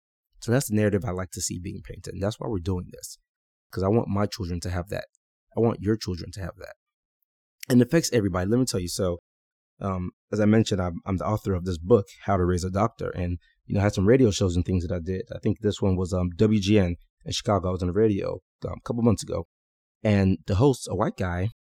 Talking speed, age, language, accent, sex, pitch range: 260 wpm, 20-39, English, American, male, 95-115 Hz